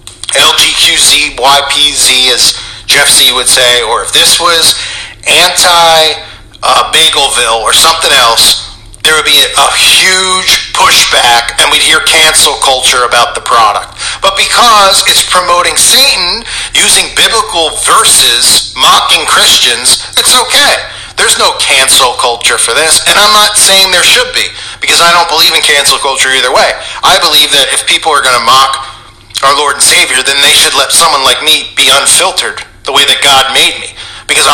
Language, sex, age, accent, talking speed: English, male, 40-59, American, 160 wpm